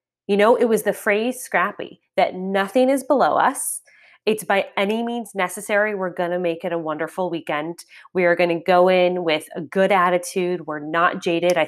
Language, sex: English, female